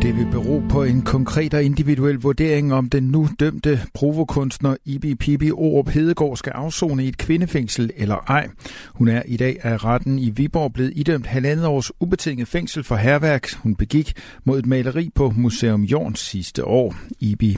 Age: 60-79